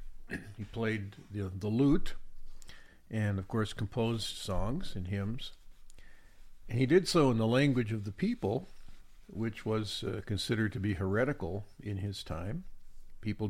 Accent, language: American, English